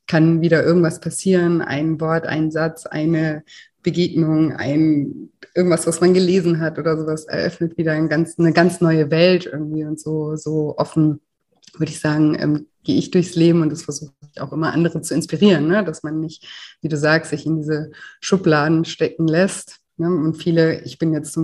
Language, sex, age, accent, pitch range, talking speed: German, female, 30-49, German, 155-170 Hz, 190 wpm